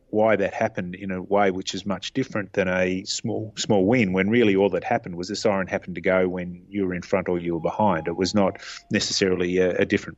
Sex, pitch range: male, 95-105 Hz